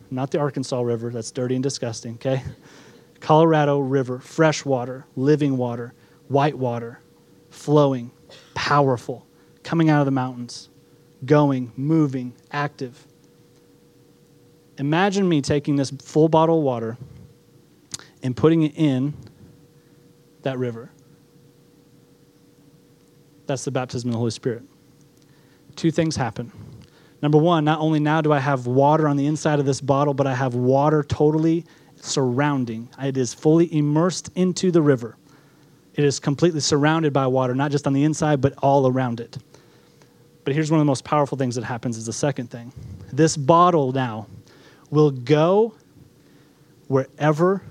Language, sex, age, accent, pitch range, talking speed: English, male, 30-49, American, 130-155 Hz, 145 wpm